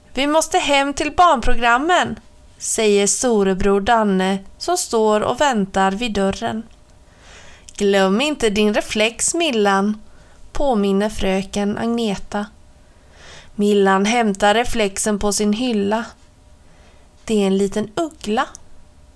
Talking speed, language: 105 wpm, Swedish